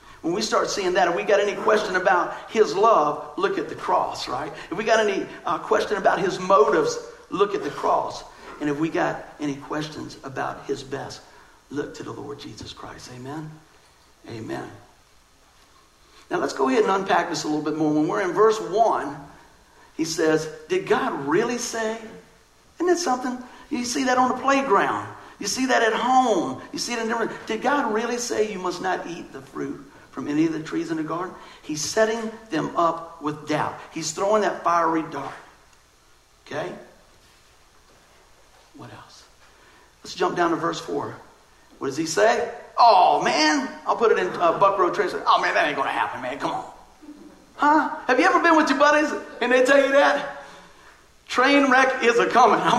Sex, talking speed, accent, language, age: male, 195 wpm, American, English, 60-79